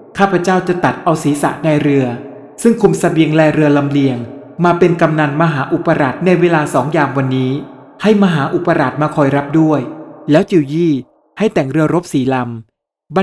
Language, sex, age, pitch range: Thai, male, 20-39, 140-175 Hz